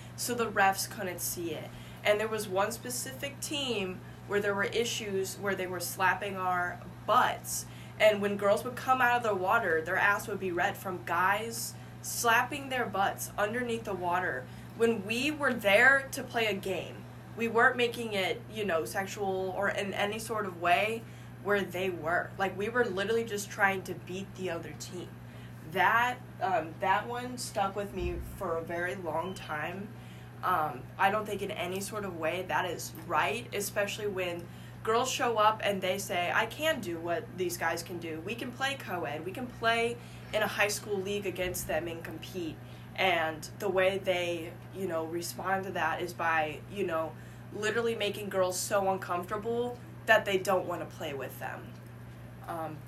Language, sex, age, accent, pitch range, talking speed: English, female, 10-29, American, 165-210 Hz, 185 wpm